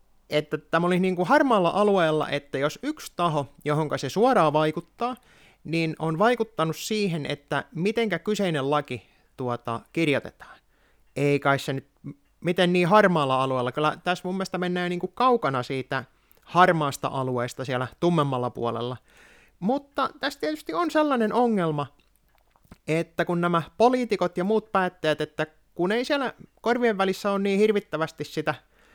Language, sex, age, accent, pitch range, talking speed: Finnish, male, 30-49, native, 150-200 Hz, 145 wpm